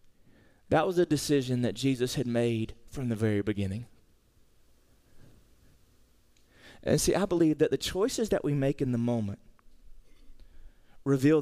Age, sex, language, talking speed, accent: 30-49, male, English, 135 wpm, American